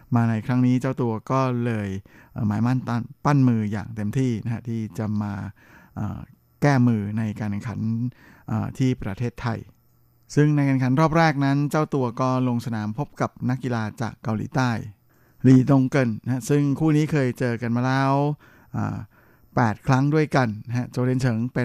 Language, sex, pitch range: Thai, male, 115-130 Hz